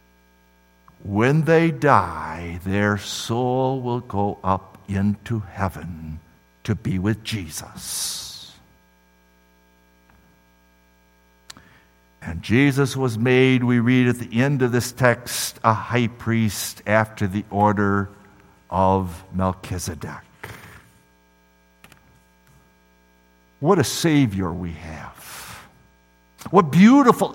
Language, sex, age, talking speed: English, male, 60-79, 90 wpm